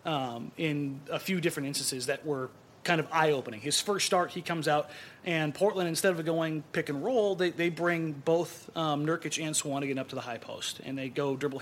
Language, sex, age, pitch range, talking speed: English, male, 30-49, 140-175 Hz, 215 wpm